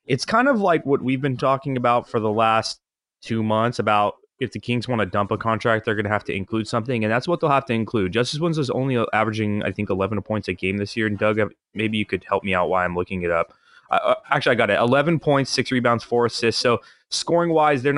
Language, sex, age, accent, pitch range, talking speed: English, male, 20-39, American, 110-140 Hz, 255 wpm